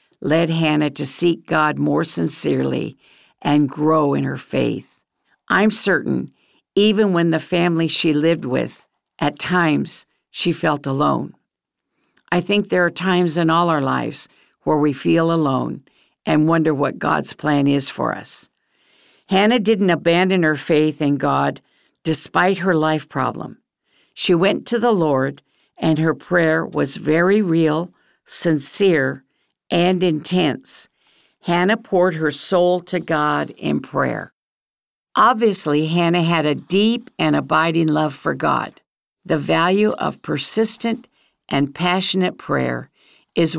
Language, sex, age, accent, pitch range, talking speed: English, female, 60-79, American, 150-180 Hz, 135 wpm